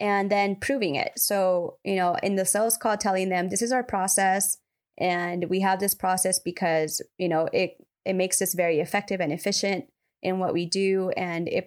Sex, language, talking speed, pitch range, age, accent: female, English, 200 wpm, 170-195 Hz, 20-39, American